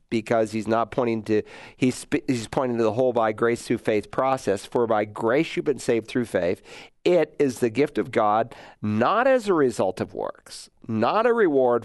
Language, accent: English, American